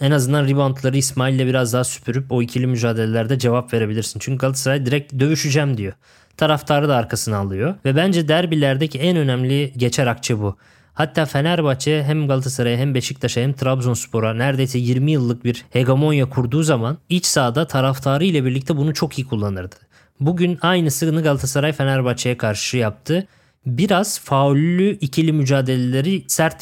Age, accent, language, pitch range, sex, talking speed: 20-39, native, Turkish, 120-150 Hz, male, 140 wpm